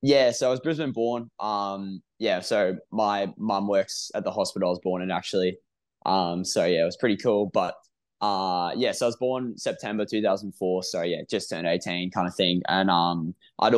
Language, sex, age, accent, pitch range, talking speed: English, male, 10-29, Australian, 95-115 Hz, 215 wpm